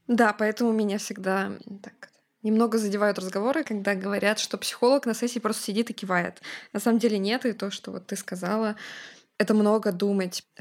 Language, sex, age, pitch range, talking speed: Russian, female, 20-39, 195-235 Hz, 170 wpm